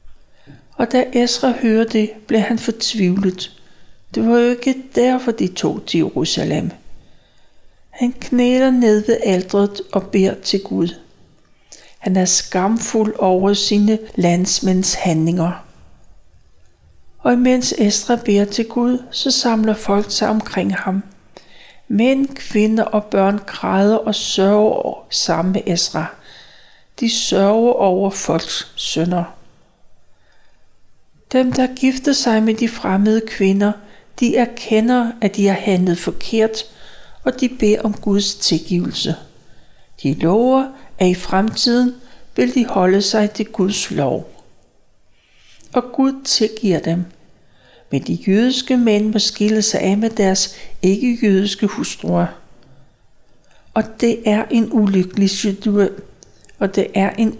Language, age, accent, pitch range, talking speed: Danish, 60-79, native, 190-235 Hz, 125 wpm